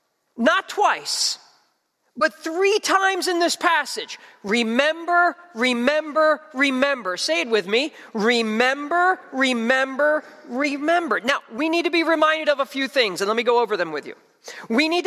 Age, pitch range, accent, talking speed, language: 40-59, 230-335 Hz, American, 150 wpm, English